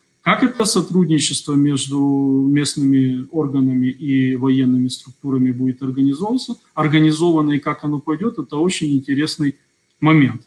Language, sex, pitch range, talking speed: Russian, male, 130-160 Hz, 110 wpm